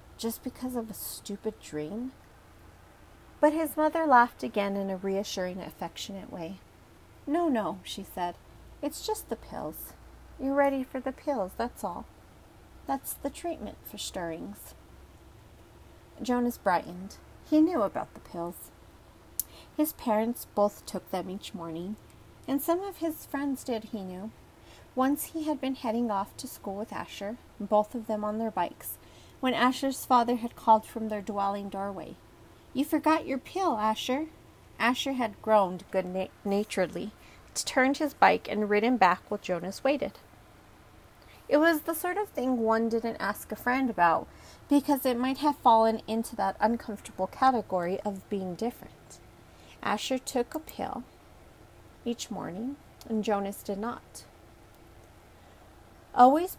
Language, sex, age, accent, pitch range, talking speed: English, female, 40-59, American, 185-265 Hz, 145 wpm